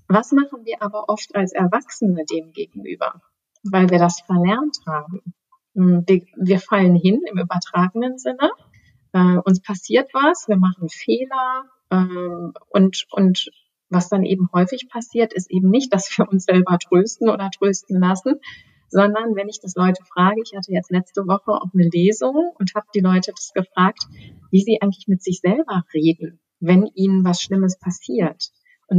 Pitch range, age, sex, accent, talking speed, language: 180-225 Hz, 30-49, female, German, 165 wpm, German